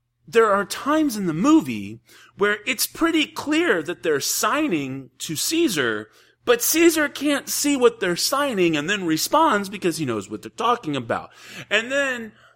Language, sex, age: English, male, 30-49